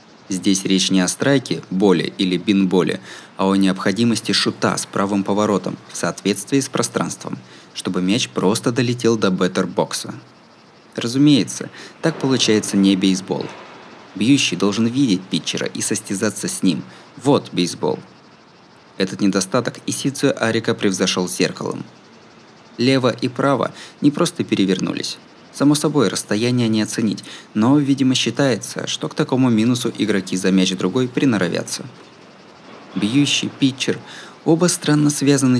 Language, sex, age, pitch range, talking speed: Russian, male, 20-39, 95-135 Hz, 125 wpm